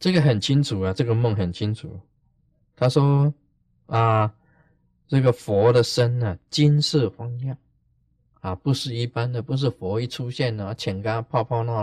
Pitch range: 105-150 Hz